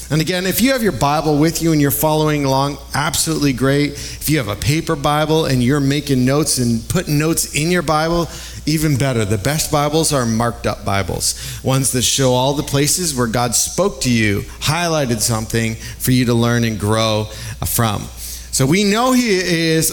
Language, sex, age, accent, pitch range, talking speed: English, male, 30-49, American, 115-155 Hz, 195 wpm